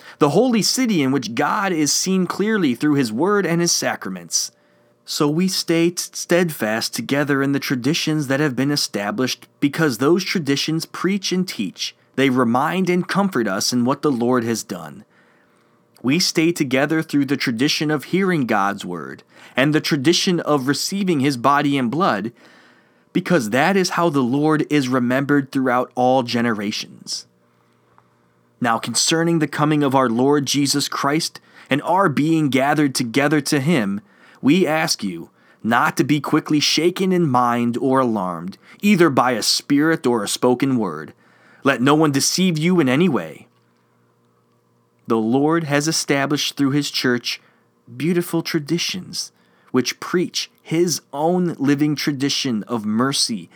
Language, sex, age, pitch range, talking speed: English, male, 30-49, 125-165 Hz, 150 wpm